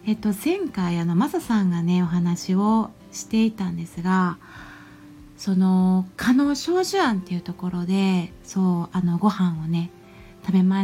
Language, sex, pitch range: Japanese, female, 175-220 Hz